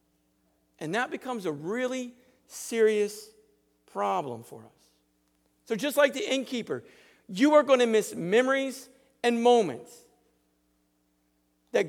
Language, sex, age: English, male, 50-69